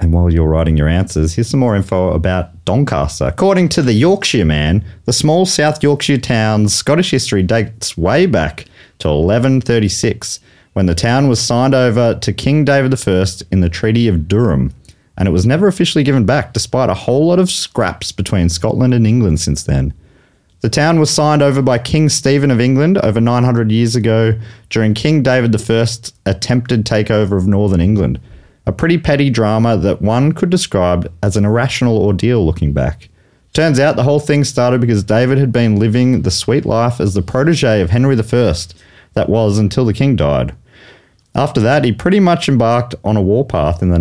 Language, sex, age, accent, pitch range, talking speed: English, male, 30-49, Australian, 95-130 Hz, 185 wpm